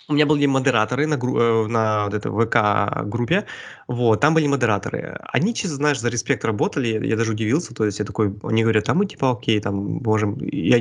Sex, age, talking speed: male, 20-39, 190 wpm